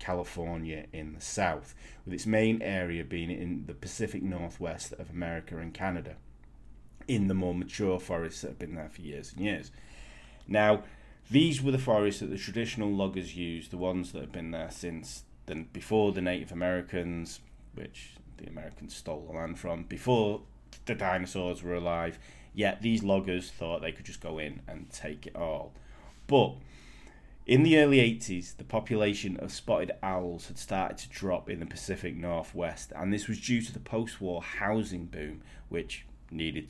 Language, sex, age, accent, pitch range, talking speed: English, male, 30-49, British, 85-110 Hz, 175 wpm